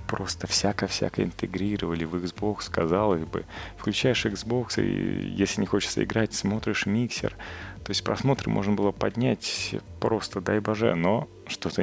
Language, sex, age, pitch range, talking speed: Russian, male, 30-49, 85-105 Hz, 135 wpm